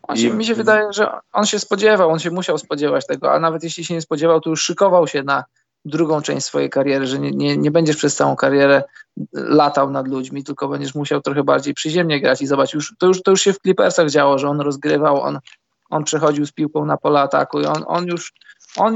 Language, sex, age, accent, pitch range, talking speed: Polish, male, 20-39, native, 150-185 Hz, 220 wpm